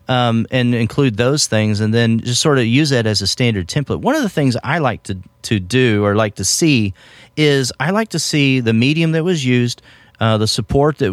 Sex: male